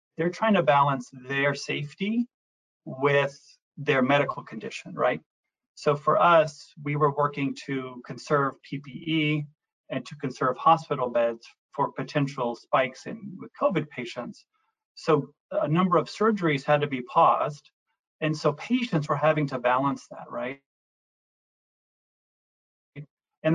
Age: 30-49